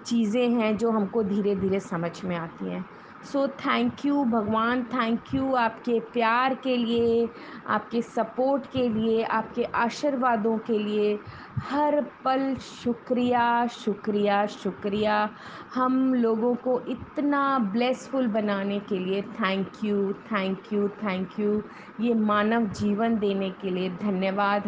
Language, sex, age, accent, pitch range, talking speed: Hindi, female, 20-39, native, 205-245 Hz, 130 wpm